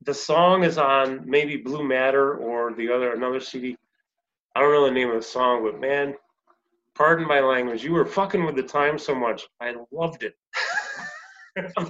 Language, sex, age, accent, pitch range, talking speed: English, male, 30-49, American, 120-165 Hz, 185 wpm